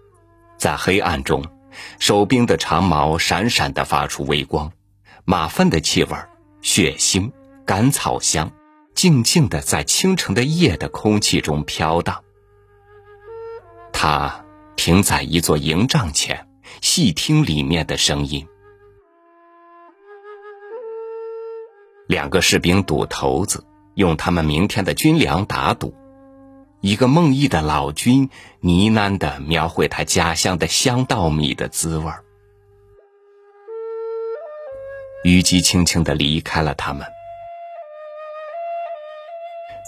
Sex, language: male, Chinese